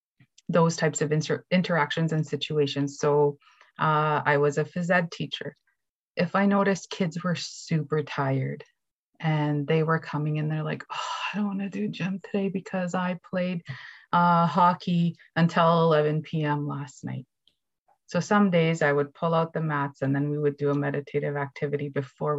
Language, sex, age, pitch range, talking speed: English, female, 30-49, 145-175 Hz, 175 wpm